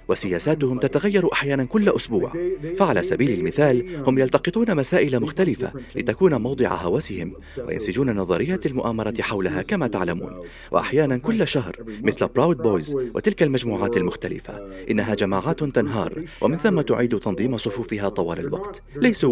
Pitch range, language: 105-150 Hz, Arabic